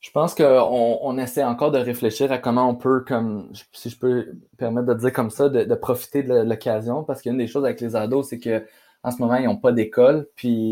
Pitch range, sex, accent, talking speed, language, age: 120-140 Hz, male, Canadian, 240 wpm, French, 20-39